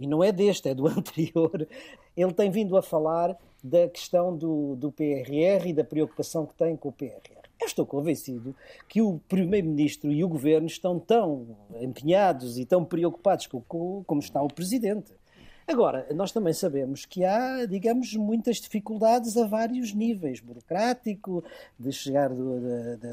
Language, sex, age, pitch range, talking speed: Portuguese, male, 50-69, 155-230 Hz, 160 wpm